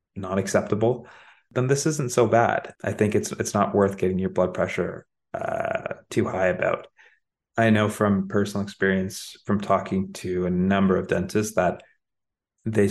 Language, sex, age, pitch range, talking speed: English, male, 30-49, 95-115 Hz, 165 wpm